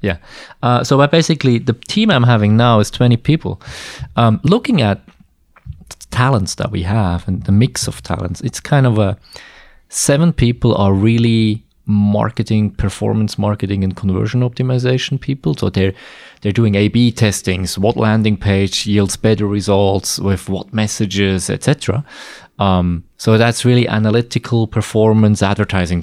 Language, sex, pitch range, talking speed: English, male, 100-120 Hz, 145 wpm